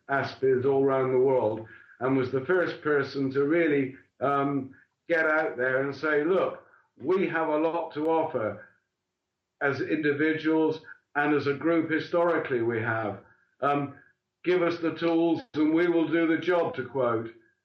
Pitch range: 140-165 Hz